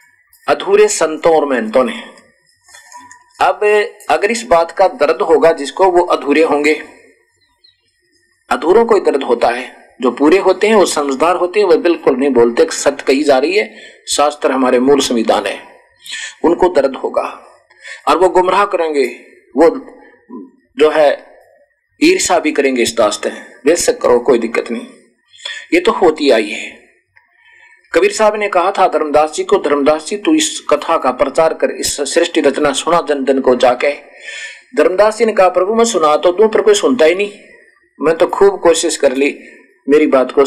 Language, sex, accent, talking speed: Hindi, male, native, 170 wpm